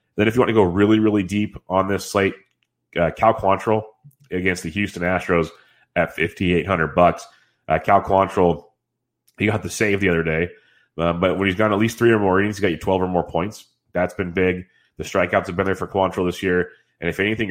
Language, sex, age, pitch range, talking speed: English, male, 30-49, 85-105 Hz, 230 wpm